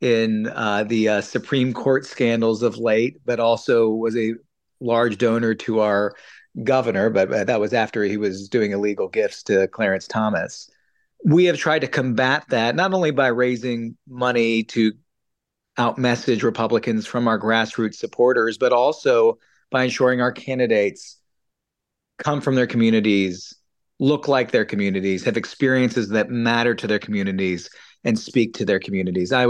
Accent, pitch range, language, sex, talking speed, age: American, 110-125 Hz, English, male, 155 wpm, 40-59